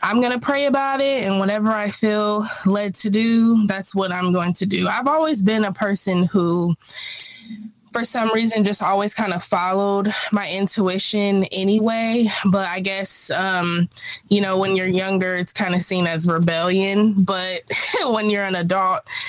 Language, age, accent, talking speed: English, 20-39, American, 175 wpm